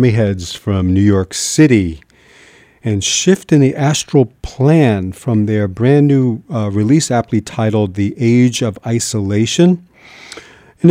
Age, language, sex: 50-69, English, male